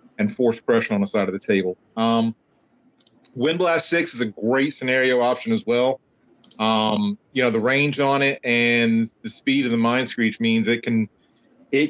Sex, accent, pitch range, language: male, American, 115-145 Hz, English